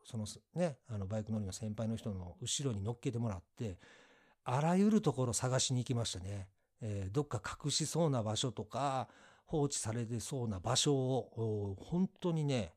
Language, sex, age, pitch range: Japanese, male, 50-69, 110-145 Hz